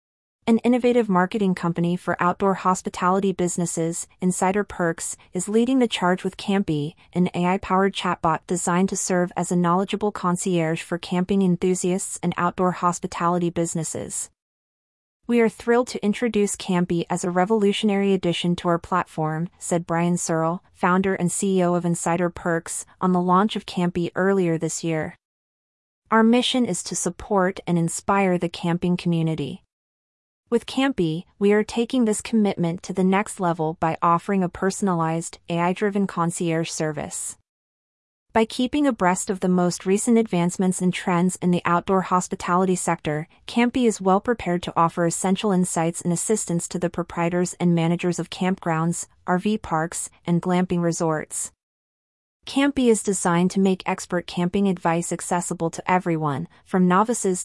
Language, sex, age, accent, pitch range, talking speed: English, female, 30-49, American, 170-195 Hz, 145 wpm